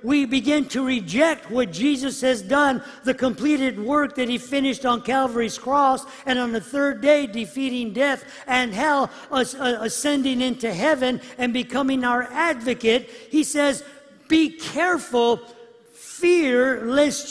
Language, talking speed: English, 135 wpm